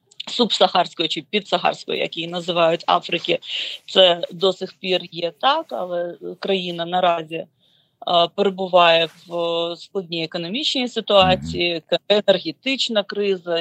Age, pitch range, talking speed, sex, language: 30-49, 170-200 Hz, 105 wpm, female, Ukrainian